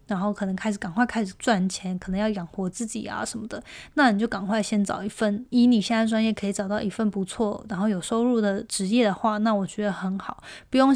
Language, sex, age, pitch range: Chinese, female, 20-39, 205-240 Hz